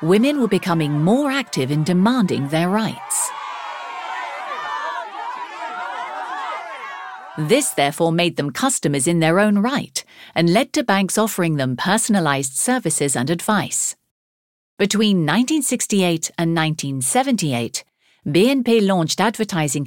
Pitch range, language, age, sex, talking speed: 155-225 Hz, French, 50-69, female, 105 wpm